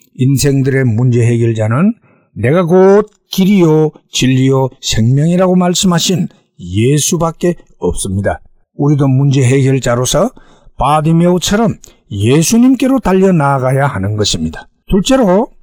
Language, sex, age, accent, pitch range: Korean, male, 60-79, native, 130-185 Hz